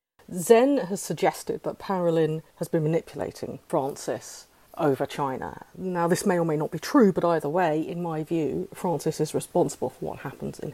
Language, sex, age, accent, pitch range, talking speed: English, female, 40-59, British, 155-195 Hz, 180 wpm